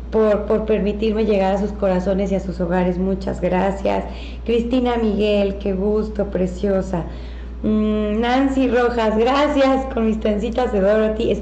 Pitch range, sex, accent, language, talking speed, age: 190-245 Hz, female, Mexican, Spanish, 140 wpm, 30-49